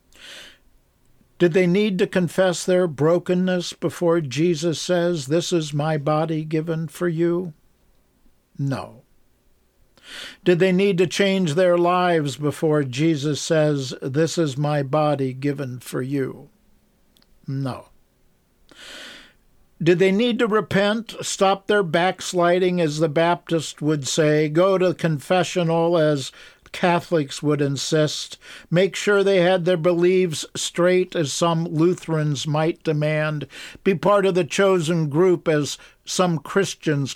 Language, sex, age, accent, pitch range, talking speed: English, male, 60-79, American, 150-180 Hz, 125 wpm